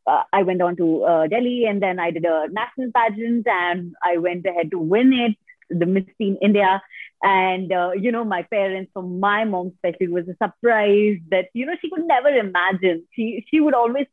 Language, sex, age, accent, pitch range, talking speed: English, female, 30-49, Indian, 185-250 Hz, 215 wpm